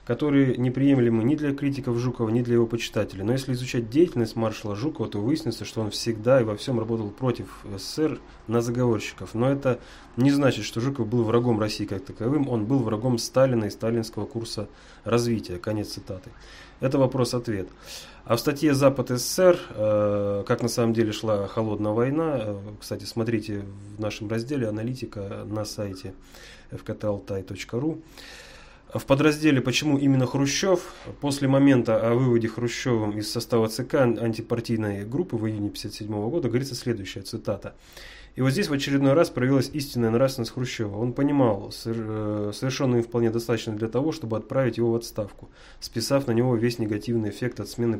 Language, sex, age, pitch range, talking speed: Russian, male, 30-49, 110-130 Hz, 160 wpm